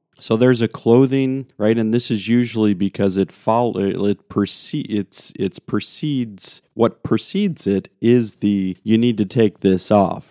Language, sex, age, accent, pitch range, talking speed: English, male, 40-59, American, 100-140 Hz, 165 wpm